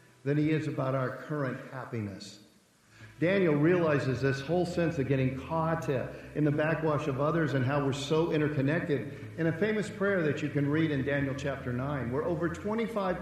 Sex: male